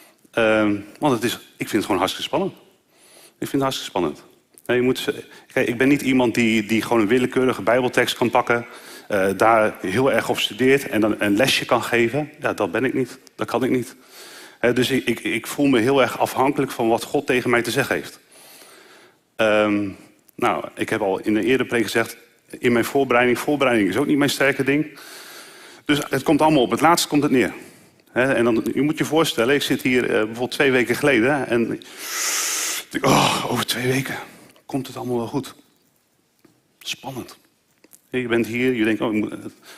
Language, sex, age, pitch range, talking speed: Dutch, male, 40-59, 115-140 Hz, 205 wpm